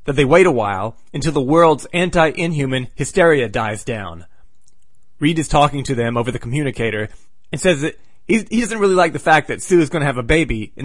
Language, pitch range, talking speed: English, 120-165 Hz, 215 wpm